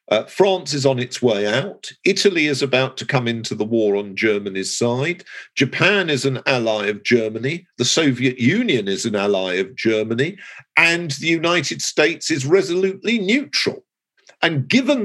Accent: British